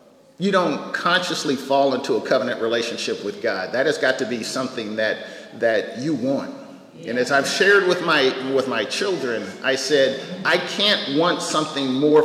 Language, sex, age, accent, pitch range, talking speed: English, male, 40-59, American, 130-200 Hz, 175 wpm